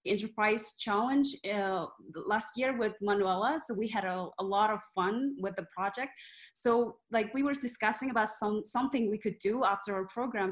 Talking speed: 185 wpm